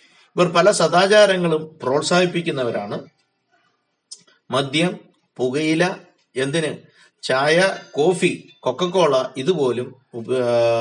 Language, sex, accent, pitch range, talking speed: Malayalam, male, native, 130-175 Hz, 65 wpm